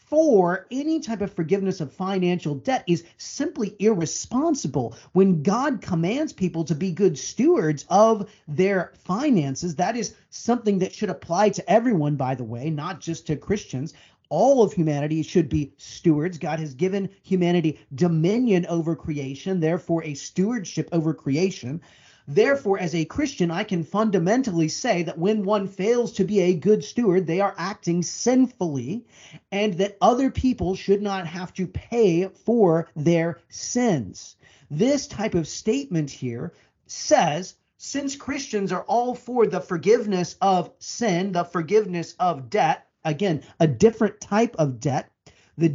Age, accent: 40-59, American